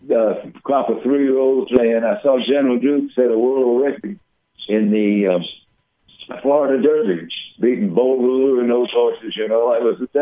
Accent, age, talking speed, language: American, 60-79, 170 wpm, English